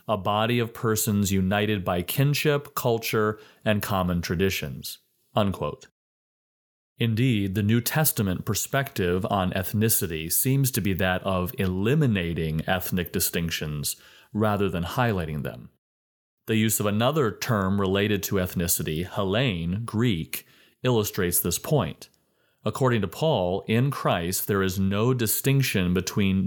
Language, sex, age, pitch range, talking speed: English, male, 30-49, 90-115 Hz, 120 wpm